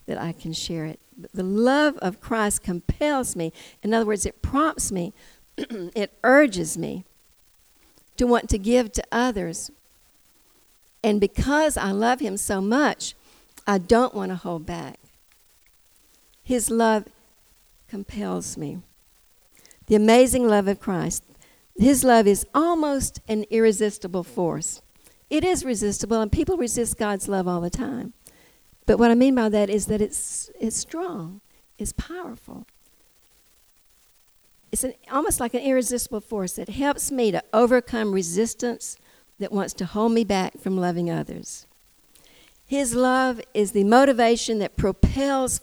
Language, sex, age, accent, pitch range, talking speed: English, female, 60-79, American, 190-245 Hz, 140 wpm